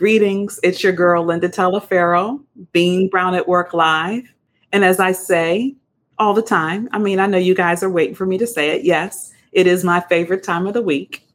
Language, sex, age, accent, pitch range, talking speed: English, female, 40-59, American, 160-185 Hz, 210 wpm